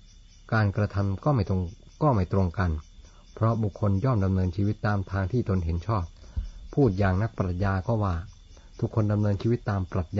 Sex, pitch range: male, 90-105 Hz